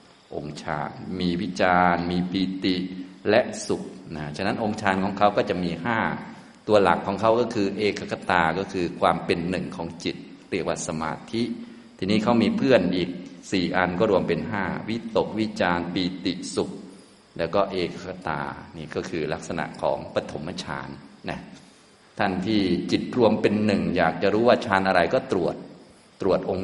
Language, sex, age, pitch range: Thai, male, 20-39, 85-95 Hz